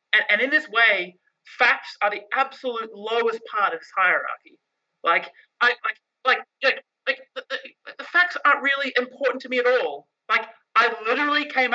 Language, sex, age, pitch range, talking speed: English, male, 30-49, 185-255 Hz, 180 wpm